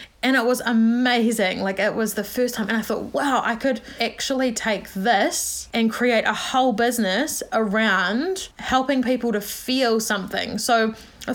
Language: English